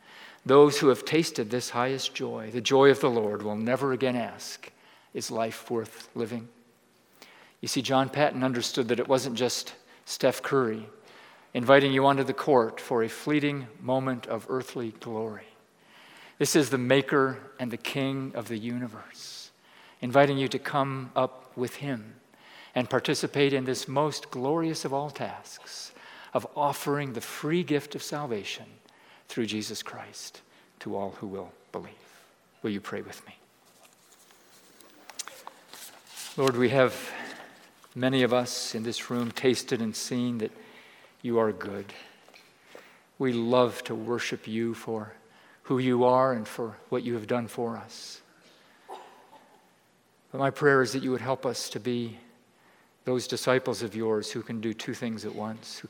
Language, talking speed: English, 155 wpm